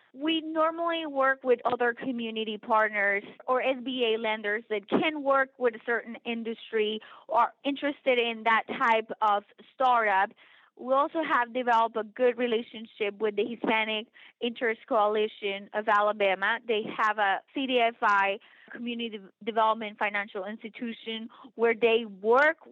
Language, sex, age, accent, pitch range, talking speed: English, female, 20-39, American, 215-250 Hz, 130 wpm